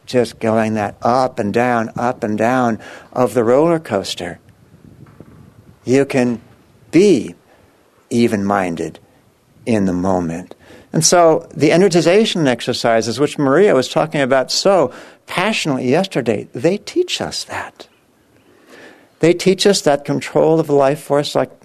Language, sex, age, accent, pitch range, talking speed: English, male, 60-79, American, 115-160 Hz, 130 wpm